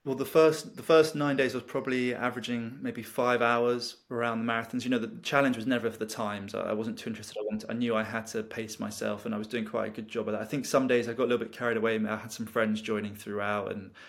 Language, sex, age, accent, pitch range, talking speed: English, male, 20-39, British, 105-120 Hz, 290 wpm